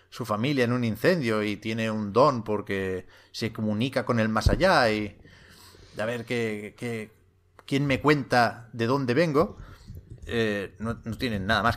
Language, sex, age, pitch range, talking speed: Spanish, male, 30-49, 100-120 Hz, 170 wpm